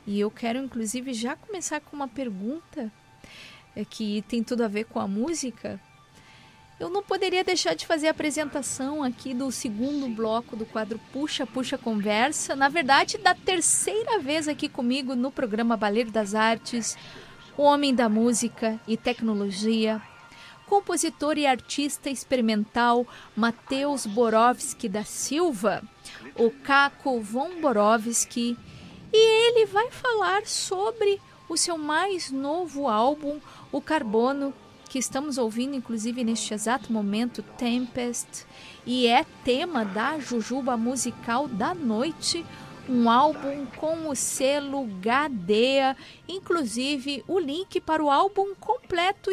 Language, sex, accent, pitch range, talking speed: Portuguese, female, Brazilian, 230-300 Hz, 130 wpm